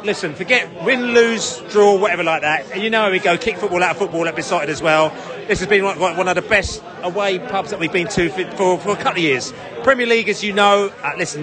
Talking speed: 250 wpm